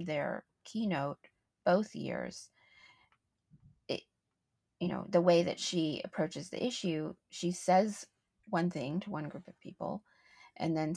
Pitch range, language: 165-195 Hz, English